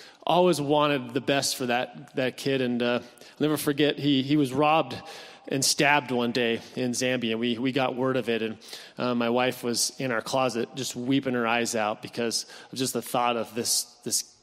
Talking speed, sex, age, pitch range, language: 210 wpm, male, 30-49, 120-140 Hz, English